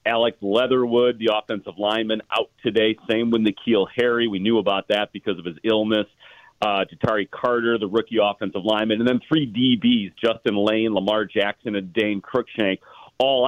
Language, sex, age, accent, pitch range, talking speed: English, male, 40-59, American, 100-120 Hz, 170 wpm